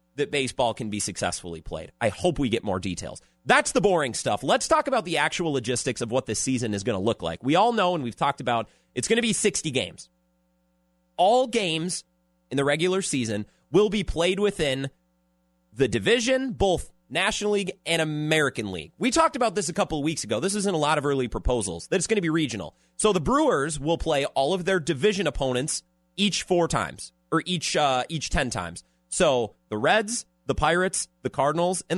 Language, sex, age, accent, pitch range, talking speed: English, male, 30-49, American, 115-180 Hz, 210 wpm